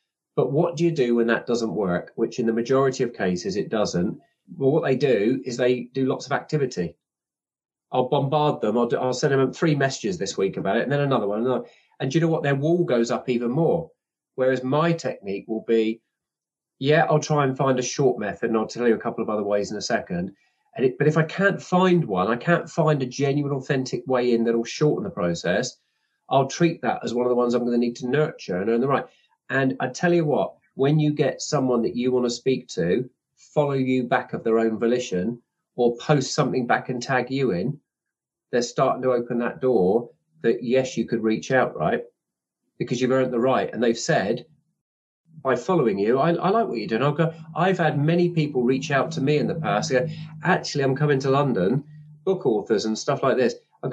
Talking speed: 230 wpm